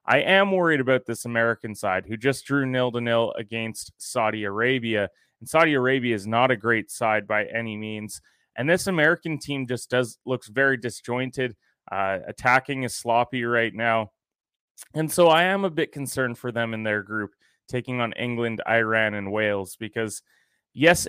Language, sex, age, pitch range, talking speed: English, male, 20-39, 115-130 Hz, 170 wpm